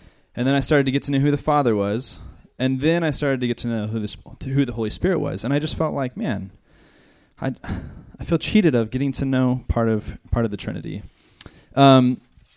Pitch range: 110-140 Hz